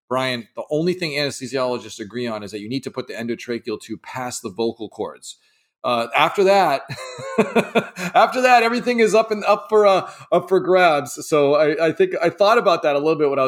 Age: 40-59